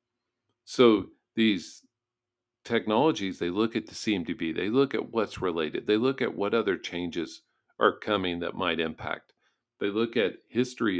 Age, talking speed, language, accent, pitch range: 50-69, 155 wpm, English, American, 105-120 Hz